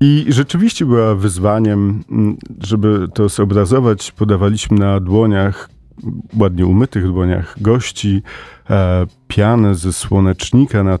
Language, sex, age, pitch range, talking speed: Polish, male, 40-59, 100-130 Hz, 100 wpm